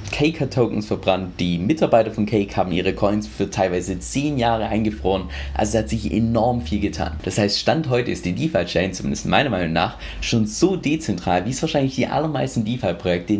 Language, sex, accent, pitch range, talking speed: German, male, German, 95-120 Hz, 180 wpm